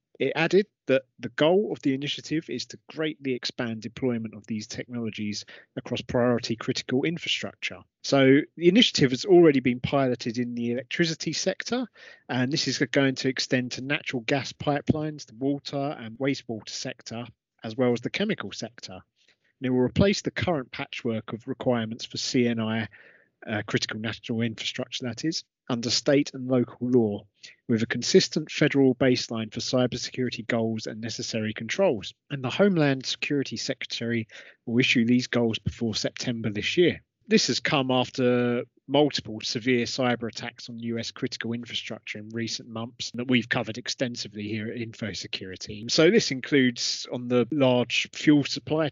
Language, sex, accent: English, male, British